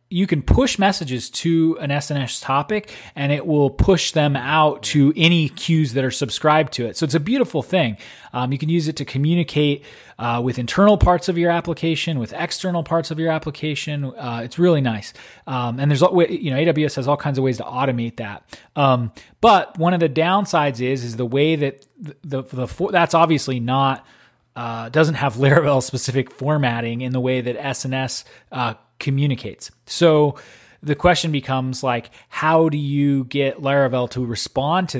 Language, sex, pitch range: English, male, 130-160 Hz